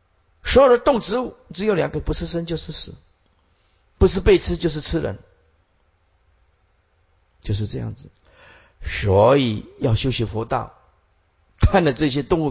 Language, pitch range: Chinese, 90-135 Hz